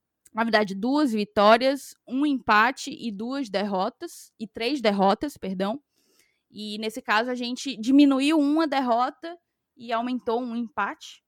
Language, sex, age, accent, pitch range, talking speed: Portuguese, female, 10-29, Brazilian, 205-250 Hz, 135 wpm